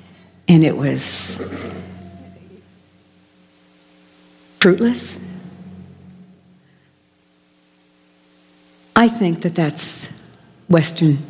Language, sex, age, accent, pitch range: English, female, 60-79, American, 130-215 Hz